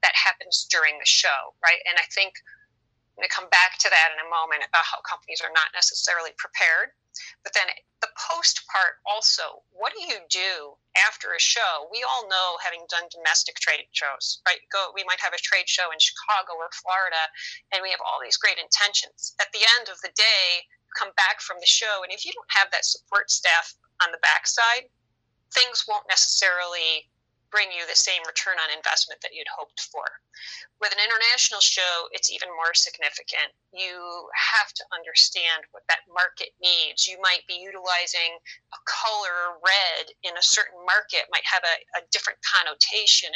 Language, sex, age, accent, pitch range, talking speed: English, female, 30-49, American, 175-225 Hz, 185 wpm